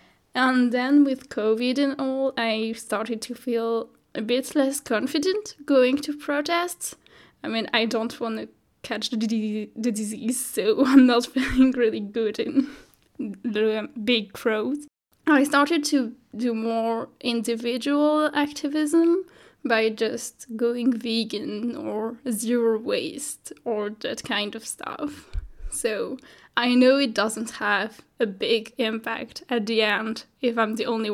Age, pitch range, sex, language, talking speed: 10-29, 225-270 Hz, female, English, 135 wpm